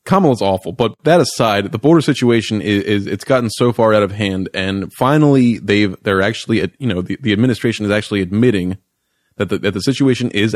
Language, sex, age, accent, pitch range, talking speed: English, male, 20-39, American, 100-120 Hz, 200 wpm